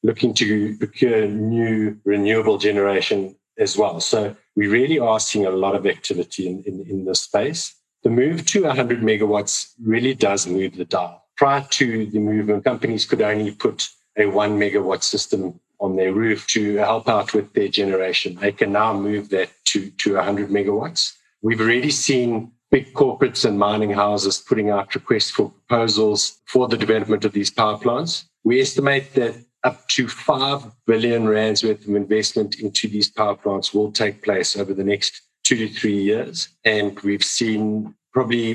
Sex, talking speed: male, 175 wpm